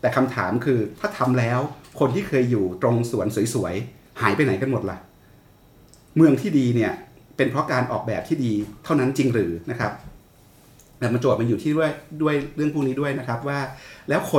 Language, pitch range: Thai, 105-130 Hz